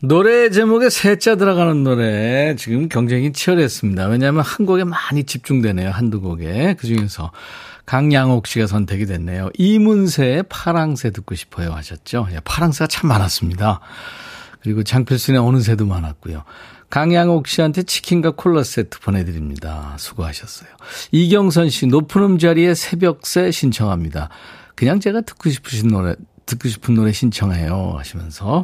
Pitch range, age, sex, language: 100-165 Hz, 40-59, male, Korean